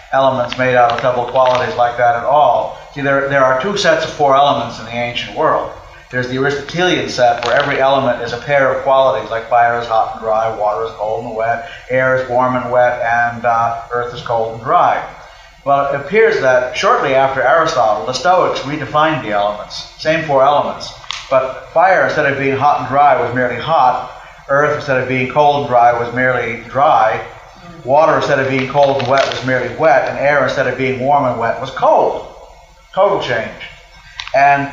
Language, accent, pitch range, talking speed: English, American, 120-150 Hz, 200 wpm